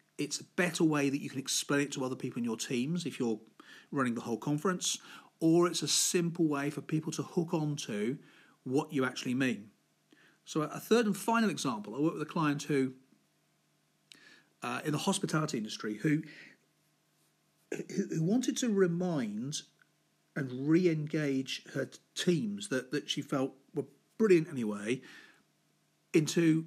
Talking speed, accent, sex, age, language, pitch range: 155 wpm, British, male, 40-59, English, 135-180 Hz